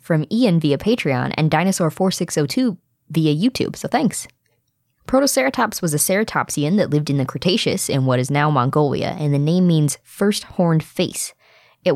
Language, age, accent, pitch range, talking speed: English, 20-39, American, 145-180 Hz, 160 wpm